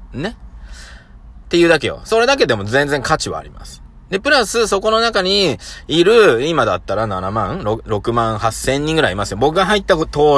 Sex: male